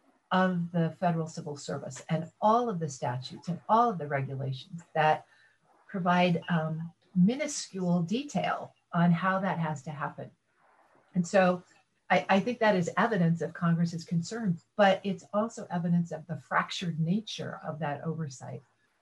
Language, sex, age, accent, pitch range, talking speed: English, female, 50-69, American, 150-195 Hz, 150 wpm